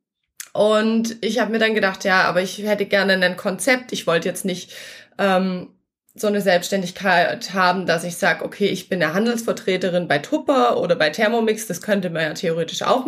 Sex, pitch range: female, 190-230 Hz